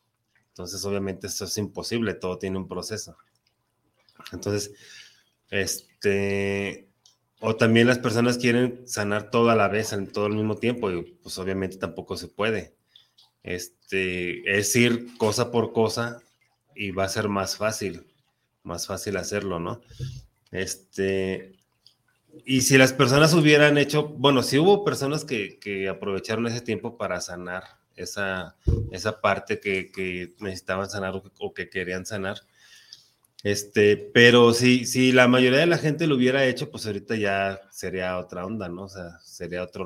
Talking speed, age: 155 wpm, 30-49